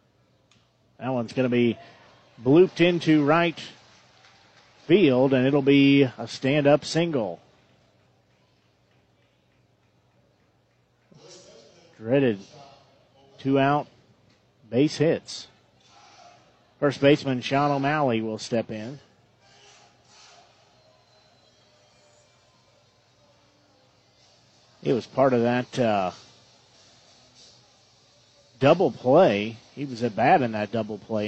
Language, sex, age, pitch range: English, male, 40-59, 115-140 Hz